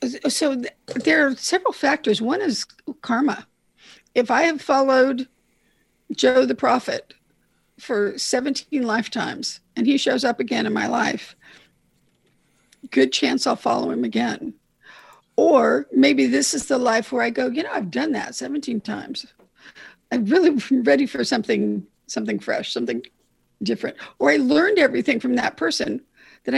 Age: 50-69